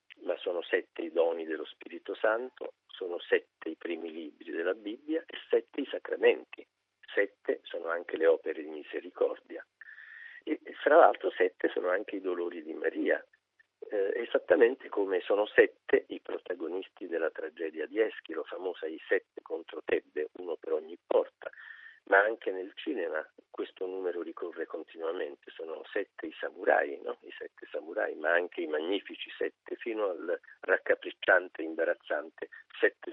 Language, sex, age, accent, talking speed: Italian, male, 50-69, native, 150 wpm